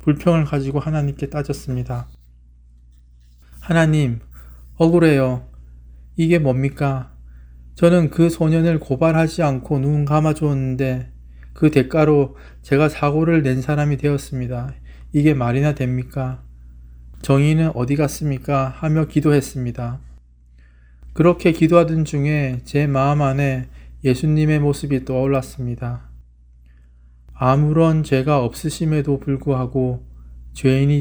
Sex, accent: male, native